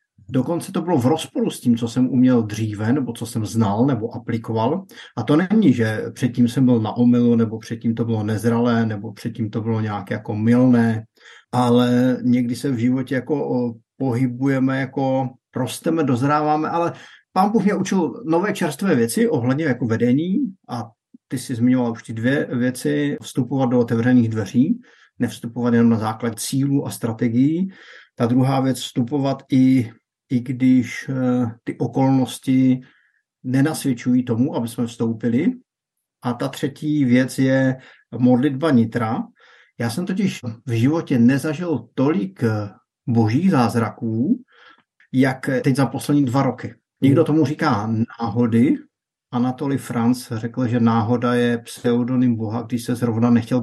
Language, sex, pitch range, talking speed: Czech, male, 120-140 Hz, 145 wpm